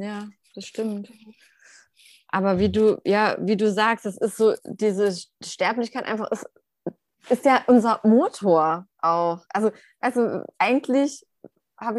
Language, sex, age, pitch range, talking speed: German, female, 20-39, 195-240 Hz, 125 wpm